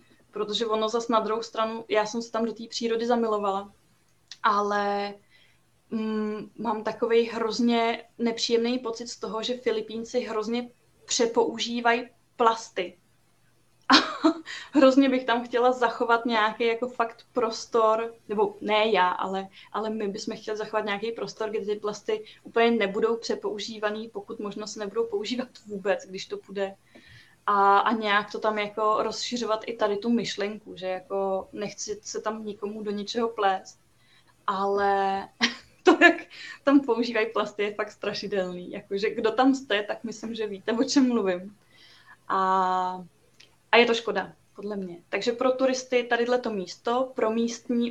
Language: Czech